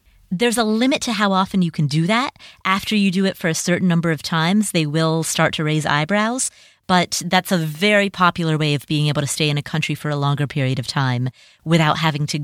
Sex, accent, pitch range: female, American, 155-200 Hz